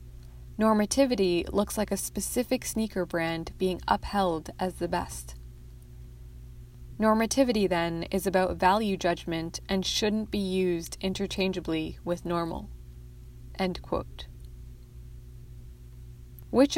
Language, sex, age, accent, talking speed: English, female, 20-39, American, 100 wpm